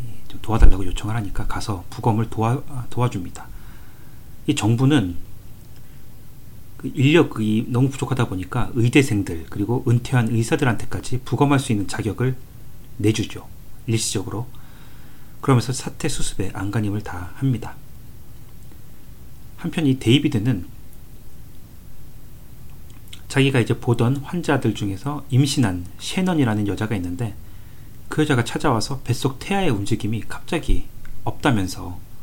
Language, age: Korean, 40-59